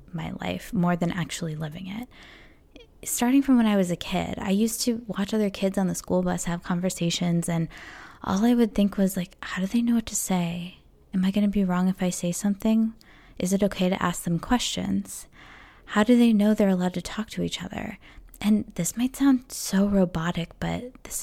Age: 20-39